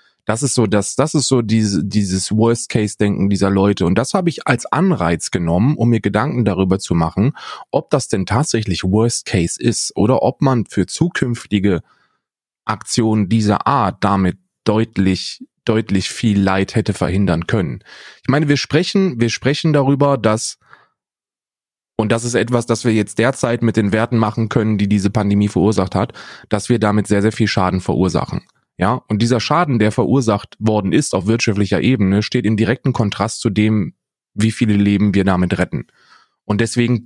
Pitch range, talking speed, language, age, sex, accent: 100-120 Hz, 175 wpm, German, 30-49, male, German